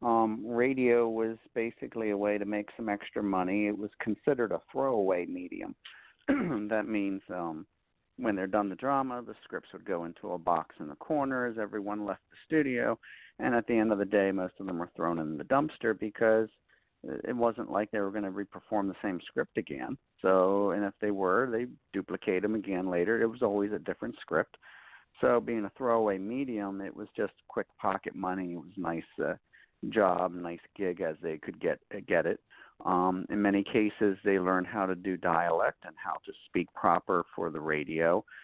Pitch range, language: 90-115 Hz, English